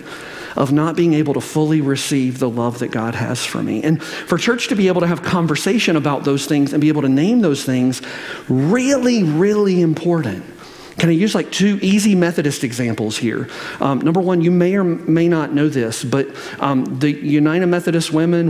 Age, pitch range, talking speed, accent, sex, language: 40-59, 130-165 Hz, 200 wpm, American, male, English